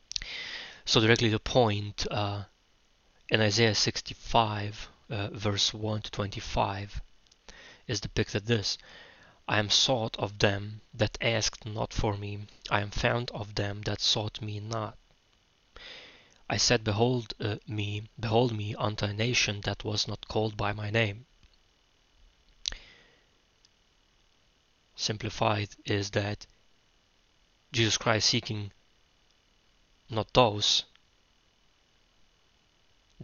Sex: male